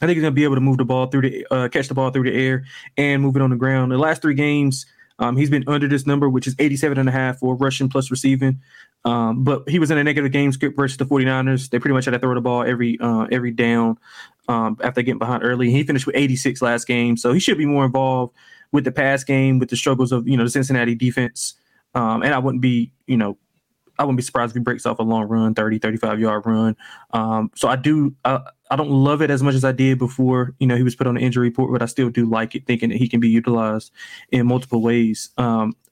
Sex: male